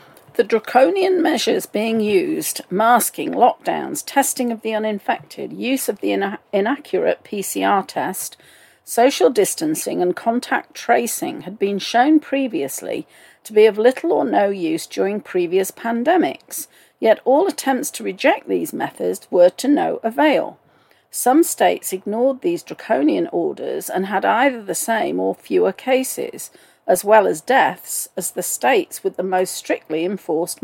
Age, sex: 40-59, female